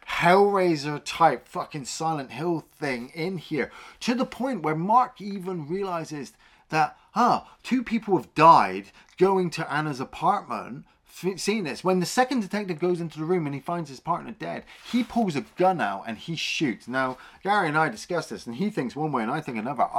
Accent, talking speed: British, 190 wpm